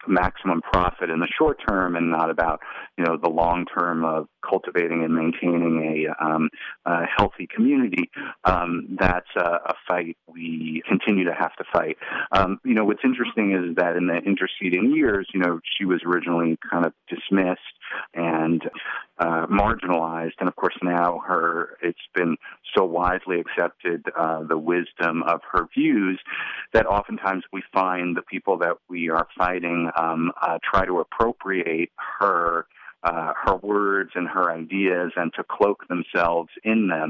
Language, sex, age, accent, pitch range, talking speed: English, male, 40-59, American, 80-90 Hz, 160 wpm